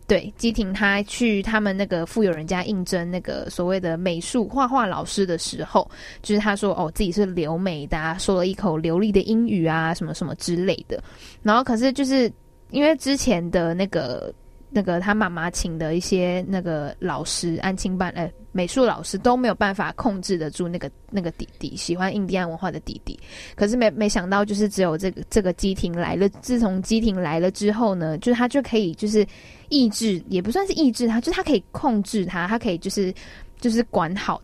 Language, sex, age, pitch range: Chinese, female, 10-29, 175-225 Hz